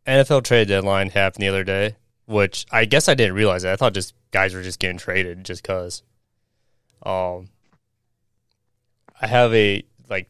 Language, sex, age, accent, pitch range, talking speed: English, male, 20-39, American, 95-115 Hz, 170 wpm